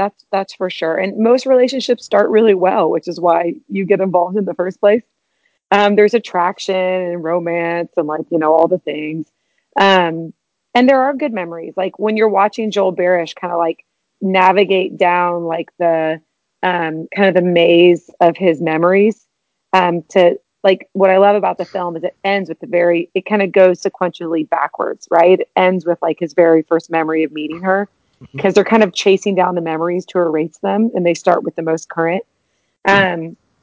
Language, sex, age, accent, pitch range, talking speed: English, female, 30-49, American, 170-200 Hz, 200 wpm